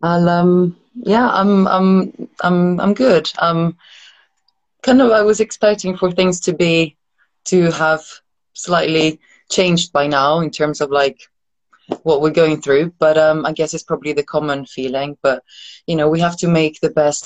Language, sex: English, female